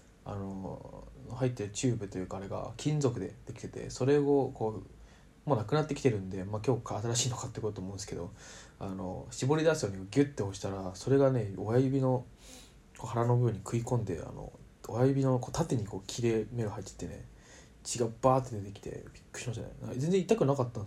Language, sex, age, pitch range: Japanese, male, 20-39, 105-130 Hz